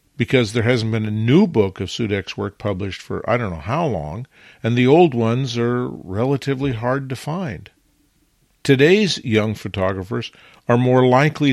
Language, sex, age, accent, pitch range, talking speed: English, male, 50-69, American, 105-135 Hz, 165 wpm